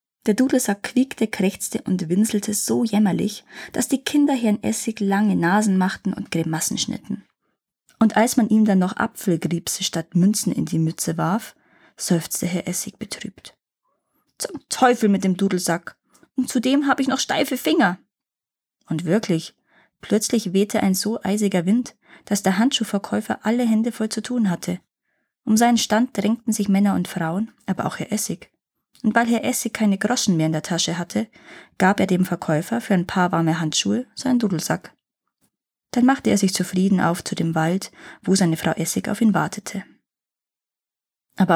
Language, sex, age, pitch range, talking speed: German, female, 20-39, 180-230 Hz, 165 wpm